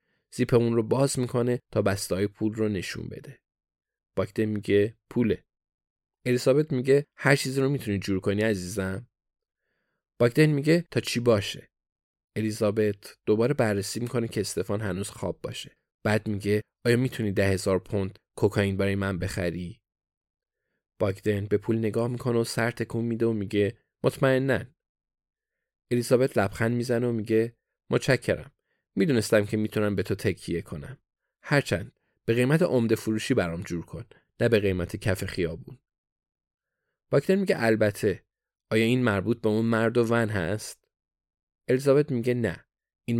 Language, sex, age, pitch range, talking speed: Persian, male, 20-39, 100-120 Hz, 140 wpm